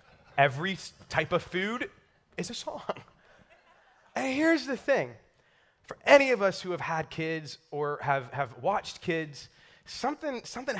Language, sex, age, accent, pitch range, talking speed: English, male, 20-39, American, 130-165 Hz, 145 wpm